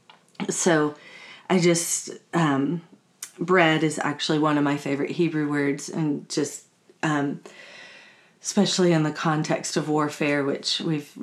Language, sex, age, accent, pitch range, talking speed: English, female, 40-59, American, 150-170 Hz, 130 wpm